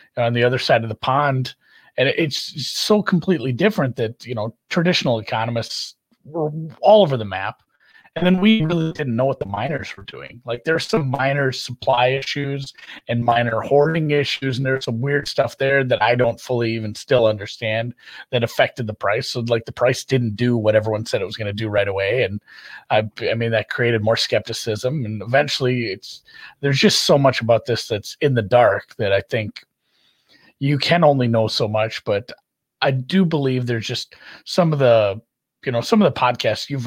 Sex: male